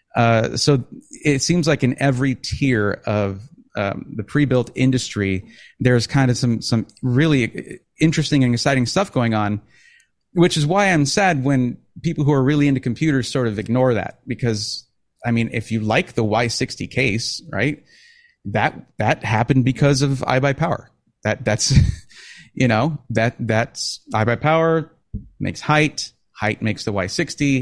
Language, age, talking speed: English, 30-49, 150 wpm